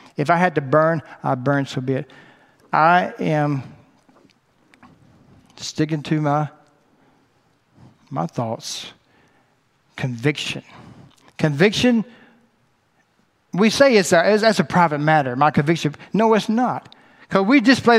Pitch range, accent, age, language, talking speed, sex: 160-225 Hz, American, 60-79, English, 125 wpm, male